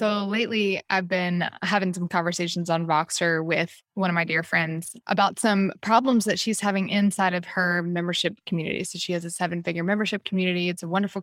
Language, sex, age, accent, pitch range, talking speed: English, female, 20-39, American, 175-220 Hz, 190 wpm